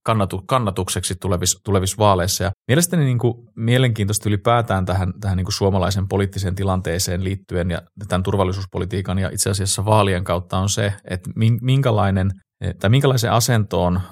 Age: 30-49